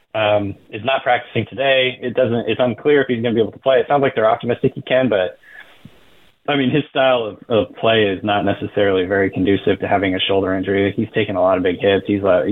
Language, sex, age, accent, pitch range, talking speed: English, male, 20-39, American, 100-120 Hz, 245 wpm